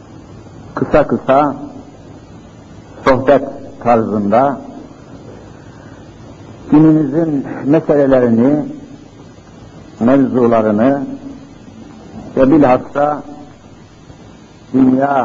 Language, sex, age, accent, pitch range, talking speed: Turkish, male, 60-79, native, 120-150 Hz, 40 wpm